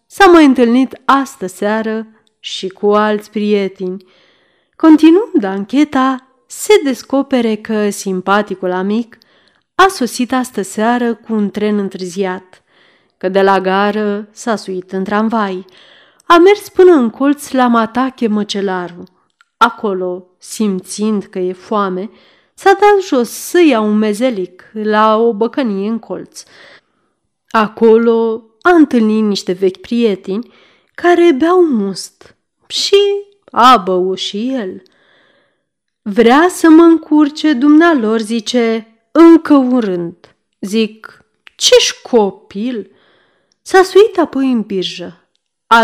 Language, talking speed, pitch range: Romanian, 115 wpm, 195-265 Hz